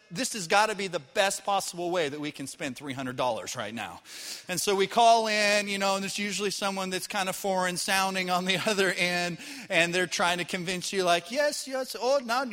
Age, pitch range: 30-49, 175-220 Hz